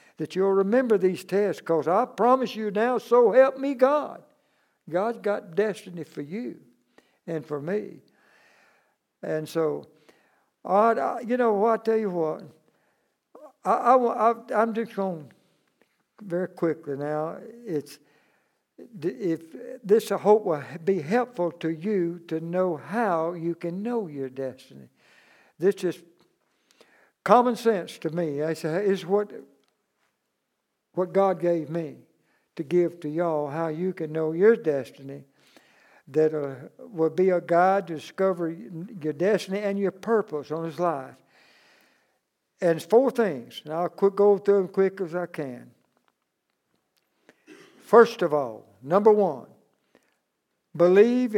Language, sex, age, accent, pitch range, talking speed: English, male, 60-79, American, 160-210 Hz, 140 wpm